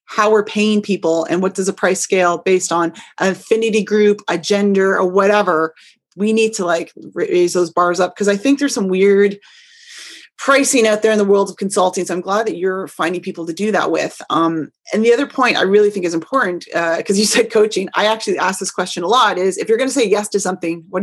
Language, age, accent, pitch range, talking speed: English, 30-49, American, 180-220 Hz, 240 wpm